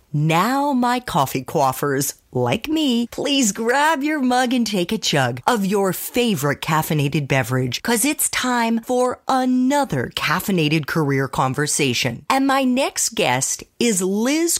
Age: 40-59